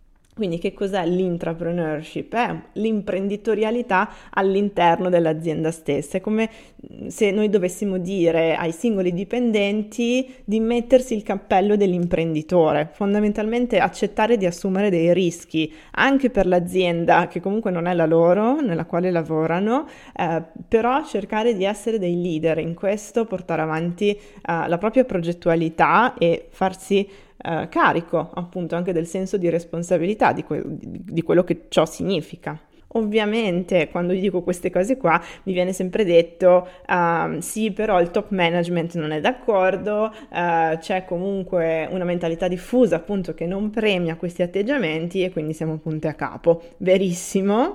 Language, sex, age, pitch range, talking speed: Italian, female, 20-39, 170-210 Hz, 140 wpm